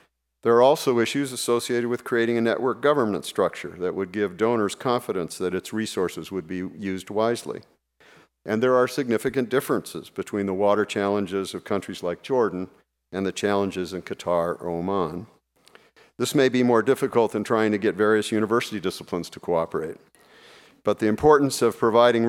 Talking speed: 165 wpm